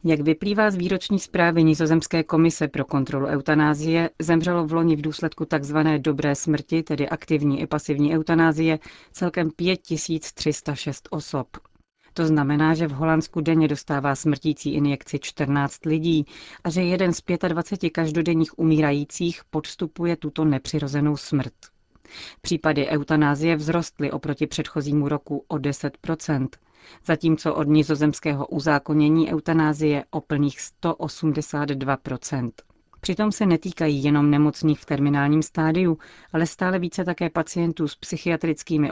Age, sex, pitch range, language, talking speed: 40-59, female, 145-165 Hz, Czech, 125 wpm